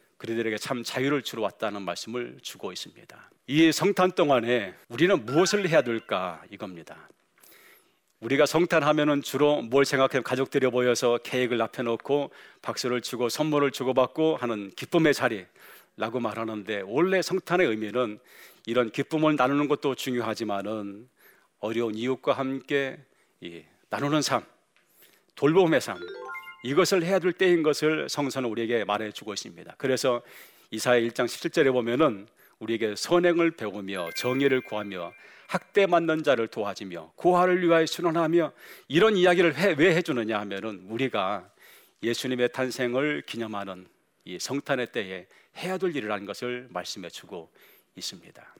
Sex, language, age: male, Korean, 40-59